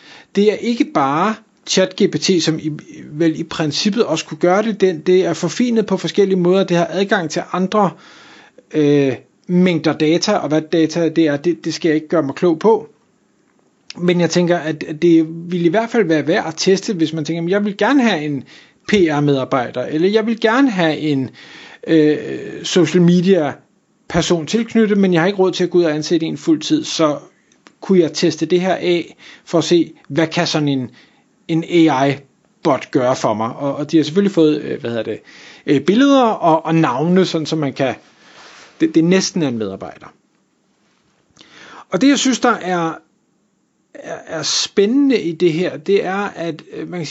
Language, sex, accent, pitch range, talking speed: Danish, male, native, 160-195 Hz, 190 wpm